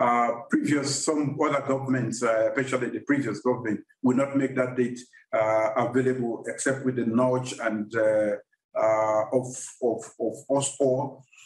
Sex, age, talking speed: male, 50-69, 150 wpm